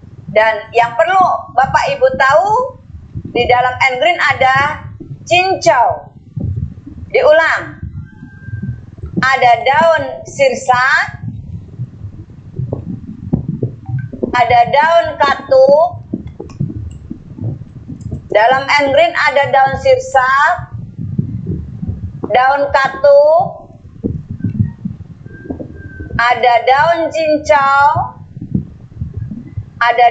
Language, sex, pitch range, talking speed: Indonesian, female, 250-320 Hz, 60 wpm